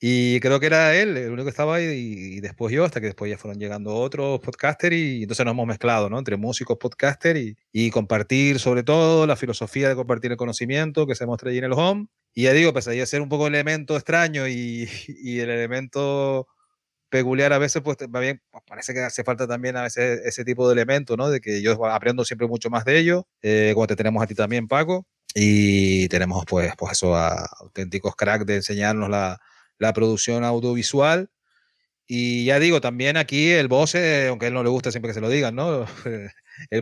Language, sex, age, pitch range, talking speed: Spanish, male, 30-49, 115-140 Hz, 220 wpm